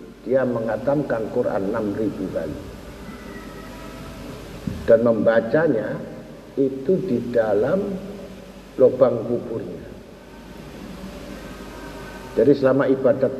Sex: male